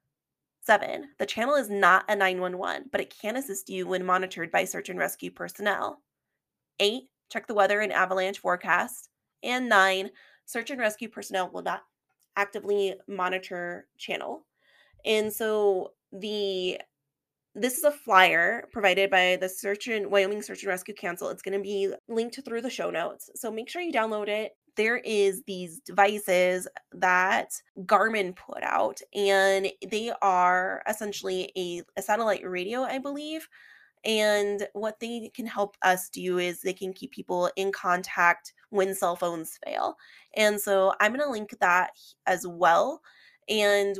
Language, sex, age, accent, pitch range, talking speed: English, female, 20-39, American, 185-220 Hz, 155 wpm